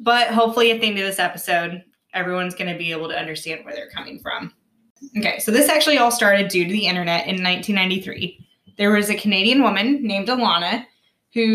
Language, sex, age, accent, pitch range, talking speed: English, female, 20-39, American, 180-225 Hz, 205 wpm